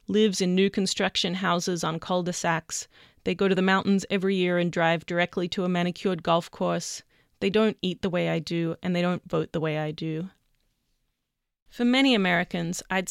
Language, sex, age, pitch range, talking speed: English, female, 30-49, 175-200 Hz, 190 wpm